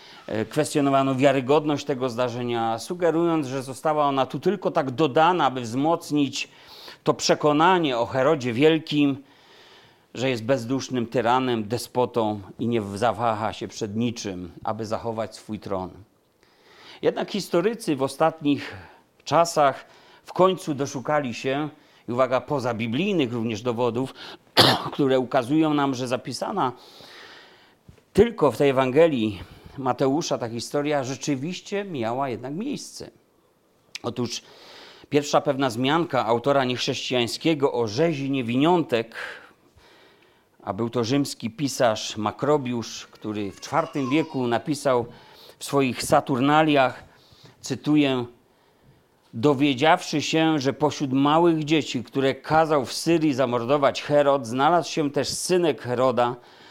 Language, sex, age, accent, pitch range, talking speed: Polish, male, 40-59, native, 120-150 Hz, 110 wpm